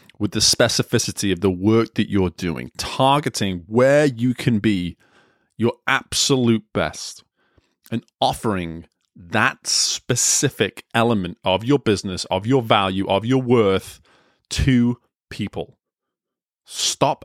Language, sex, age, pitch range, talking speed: English, male, 20-39, 100-130 Hz, 120 wpm